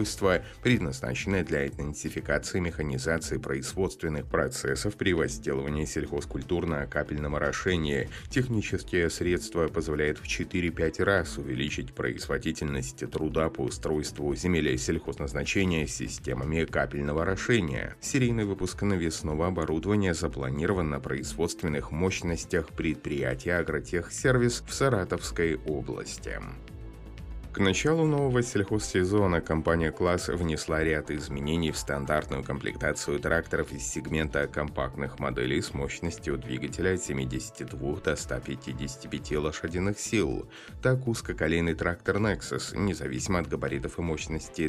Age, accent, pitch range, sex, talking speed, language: 30-49, native, 75-95 Hz, male, 100 wpm, Russian